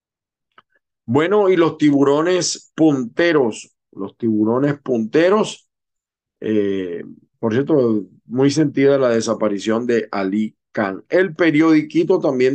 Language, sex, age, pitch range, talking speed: Spanish, male, 50-69, 115-180 Hz, 100 wpm